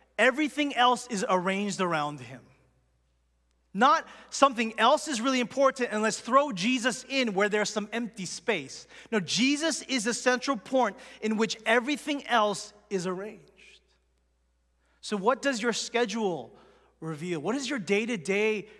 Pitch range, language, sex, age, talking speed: 150-235 Hz, English, male, 30-49, 140 wpm